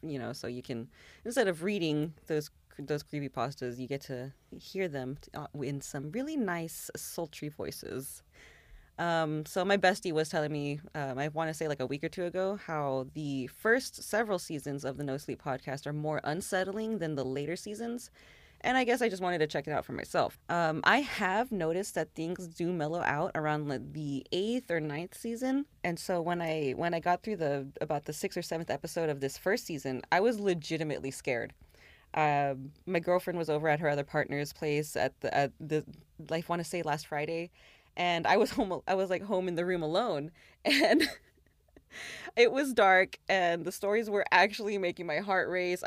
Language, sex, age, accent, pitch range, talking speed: English, female, 20-39, American, 145-190 Hz, 200 wpm